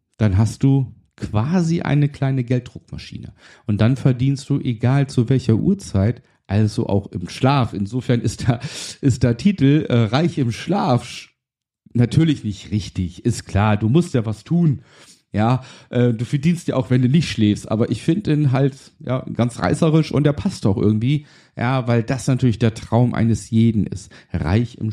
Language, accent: German, German